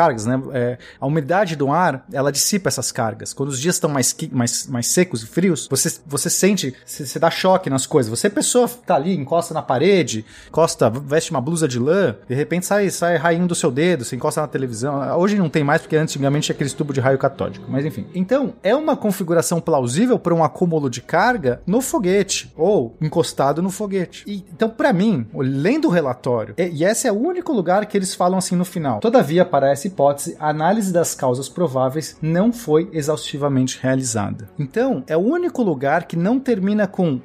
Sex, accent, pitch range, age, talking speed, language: male, Brazilian, 140-195 Hz, 30-49, 210 wpm, Portuguese